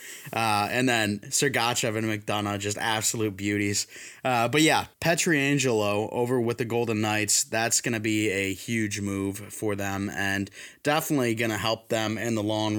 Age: 20-39